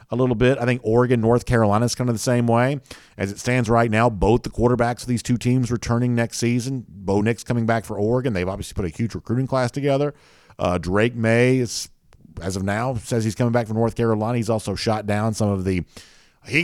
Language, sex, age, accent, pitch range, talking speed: English, male, 50-69, American, 100-125 Hz, 235 wpm